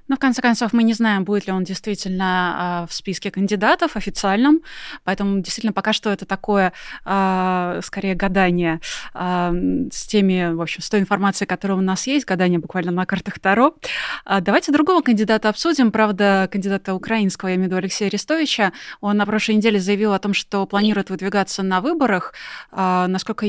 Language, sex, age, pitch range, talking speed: Russian, female, 20-39, 190-225 Hz, 165 wpm